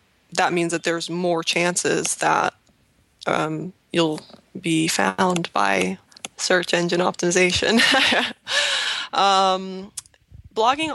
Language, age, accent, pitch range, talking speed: English, 20-39, American, 170-190 Hz, 95 wpm